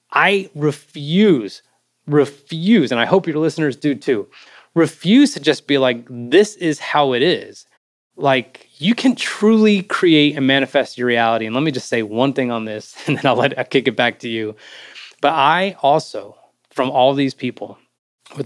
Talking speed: 180 wpm